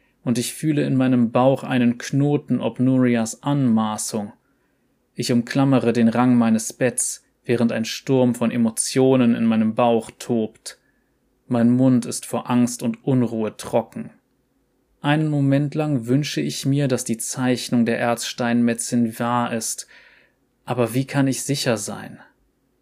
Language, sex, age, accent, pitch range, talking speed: German, male, 20-39, German, 120-130 Hz, 140 wpm